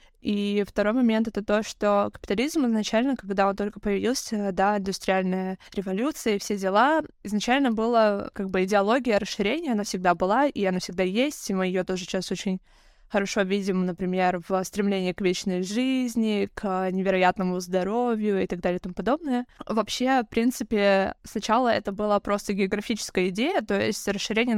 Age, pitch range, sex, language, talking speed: 20-39, 195-230 Hz, female, Russian, 165 wpm